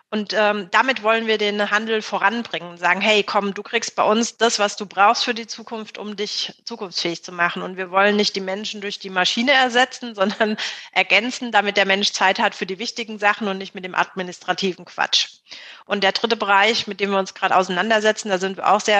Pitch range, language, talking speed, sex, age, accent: 190-220 Hz, German, 220 wpm, female, 30-49, German